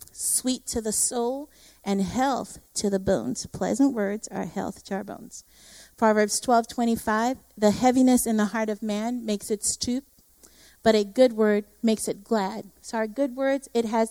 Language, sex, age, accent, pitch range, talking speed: English, female, 30-49, American, 205-245 Hz, 185 wpm